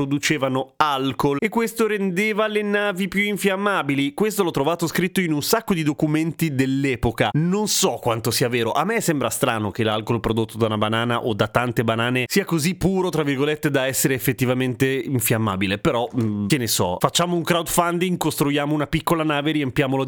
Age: 30-49